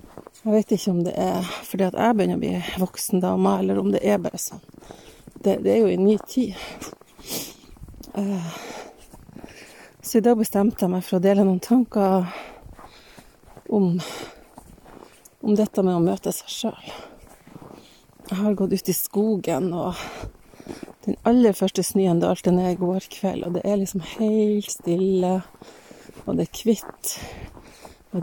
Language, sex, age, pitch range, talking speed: English, female, 30-49, 185-210 Hz, 155 wpm